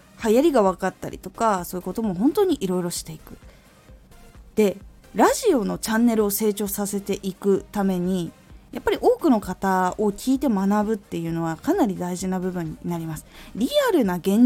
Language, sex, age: Japanese, female, 20-39